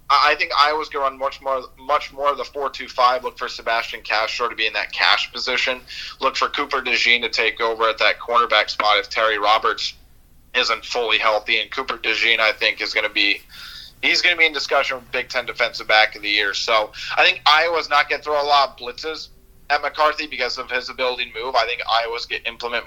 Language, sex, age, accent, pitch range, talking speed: English, male, 30-49, American, 115-135 Hz, 230 wpm